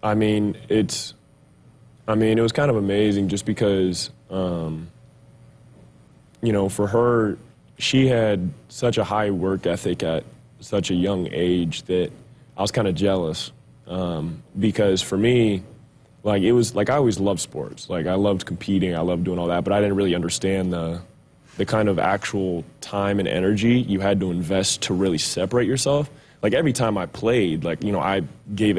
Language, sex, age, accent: English, male, 20-39, American